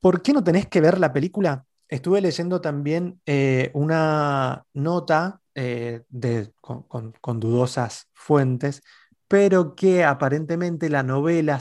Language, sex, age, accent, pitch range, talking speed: Spanish, male, 20-39, Argentinian, 135-170 Hz, 135 wpm